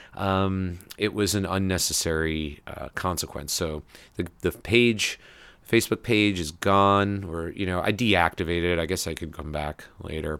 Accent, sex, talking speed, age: American, male, 160 wpm, 30-49